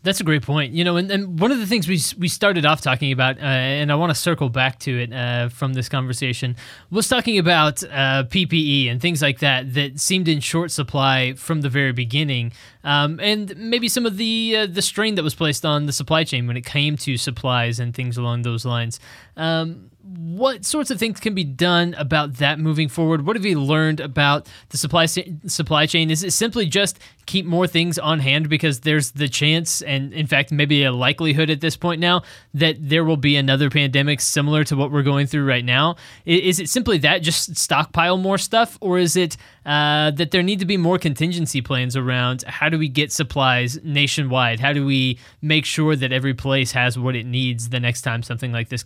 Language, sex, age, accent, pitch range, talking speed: English, male, 20-39, American, 130-170 Hz, 220 wpm